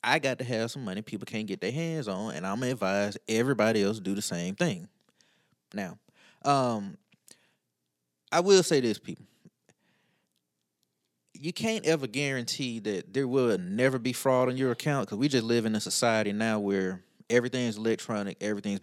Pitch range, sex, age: 100-140 Hz, male, 20-39